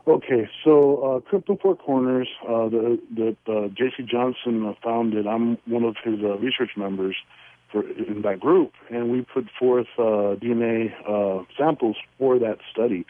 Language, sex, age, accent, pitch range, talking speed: English, male, 50-69, American, 105-130 Hz, 160 wpm